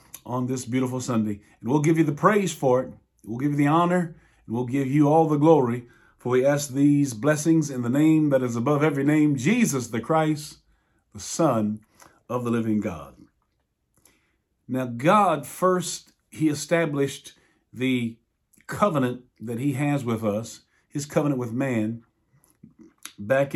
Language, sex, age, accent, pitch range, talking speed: English, male, 50-69, American, 125-160 Hz, 160 wpm